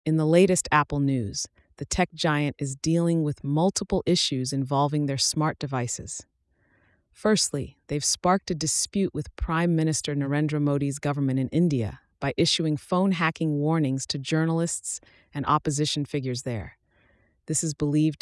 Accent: American